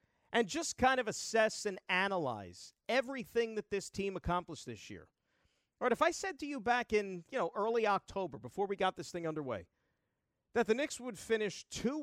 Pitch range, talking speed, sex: 170-245 Hz, 195 wpm, male